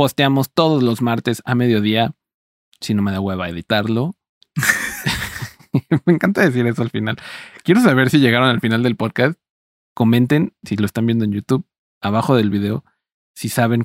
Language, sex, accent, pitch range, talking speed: Spanish, male, Mexican, 105-140 Hz, 170 wpm